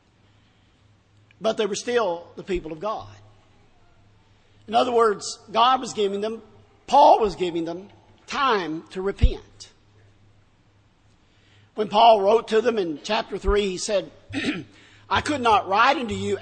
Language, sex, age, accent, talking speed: English, male, 50-69, American, 140 wpm